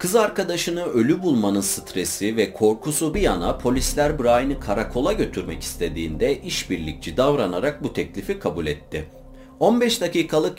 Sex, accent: male, native